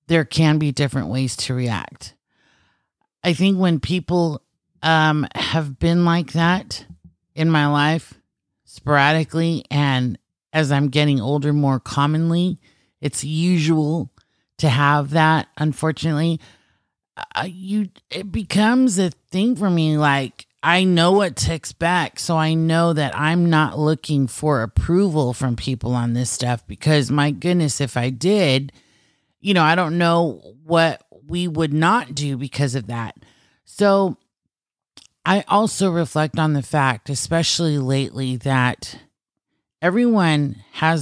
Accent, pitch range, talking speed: American, 130-165 Hz, 135 wpm